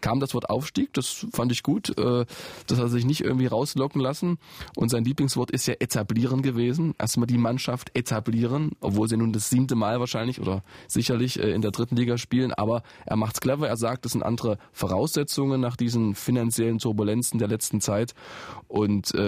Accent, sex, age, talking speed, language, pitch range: German, male, 20-39, 185 wpm, German, 120-145 Hz